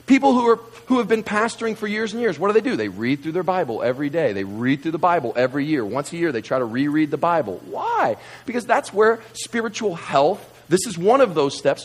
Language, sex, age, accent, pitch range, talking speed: English, male, 40-59, American, 120-190 Hz, 255 wpm